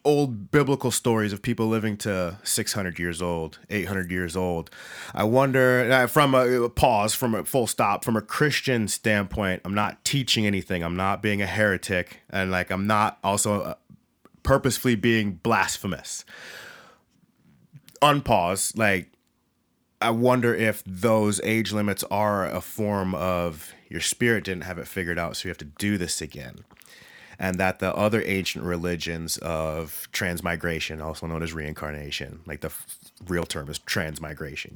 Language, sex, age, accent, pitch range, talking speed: English, male, 30-49, American, 85-115 Hz, 150 wpm